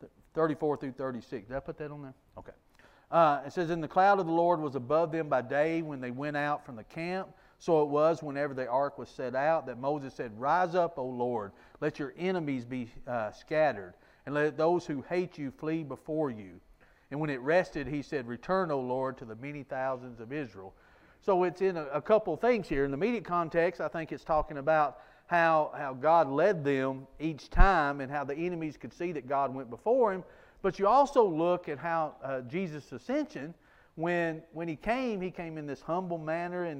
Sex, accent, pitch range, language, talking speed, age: male, American, 140-175 Hz, English, 215 wpm, 40-59